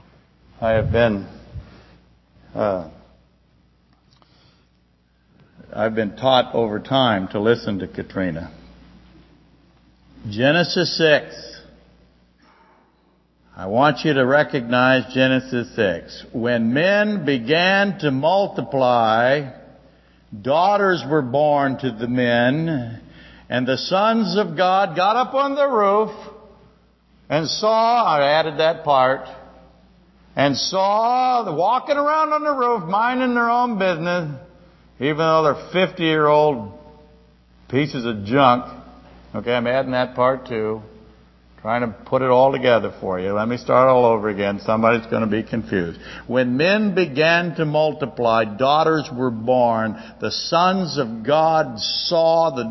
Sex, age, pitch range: male, 60-79, 110-165 Hz